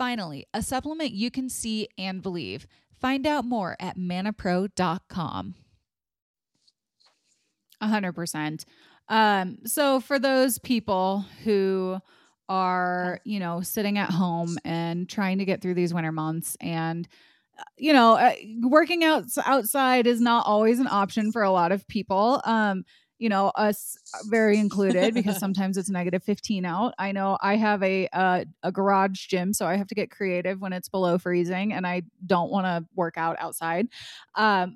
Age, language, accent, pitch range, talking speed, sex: 30-49, English, American, 185-230 Hz, 155 wpm, female